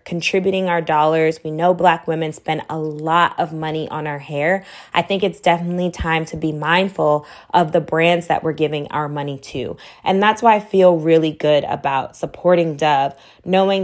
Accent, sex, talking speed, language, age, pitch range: American, female, 185 wpm, English, 20-39, 150-180 Hz